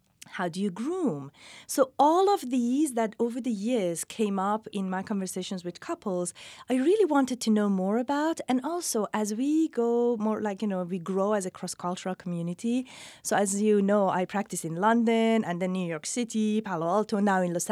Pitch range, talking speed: 185-260 Hz, 205 wpm